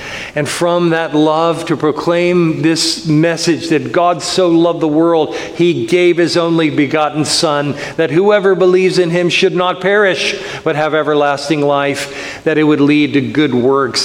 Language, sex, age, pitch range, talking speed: English, male, 40-59, 140-190 Hz, 165 wpm